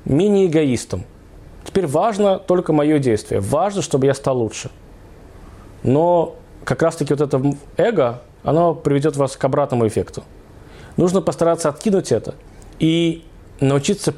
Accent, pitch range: native, 110-165 Hz